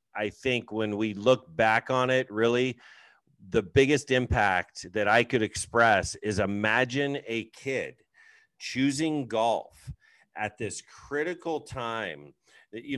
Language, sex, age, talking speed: English, male, 40-59, 125 wpm